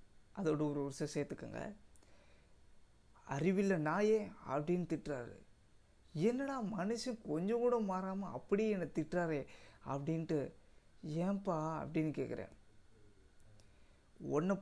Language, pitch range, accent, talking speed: Tamil, 140-190 Hz, native, 85 wpm